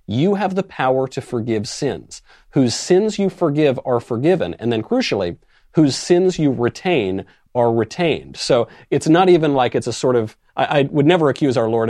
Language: English